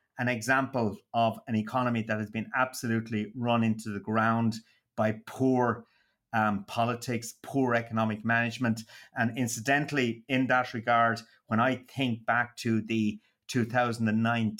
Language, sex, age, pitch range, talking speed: English, male, 30-49, 110-120 Hz, 130 wpm